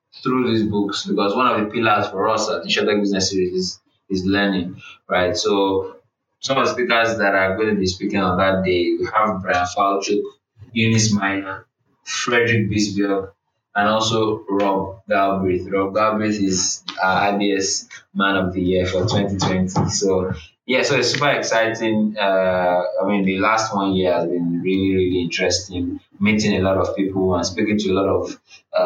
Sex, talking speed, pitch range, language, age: male, 180 wpm, 95-110 Hz, English, 20-39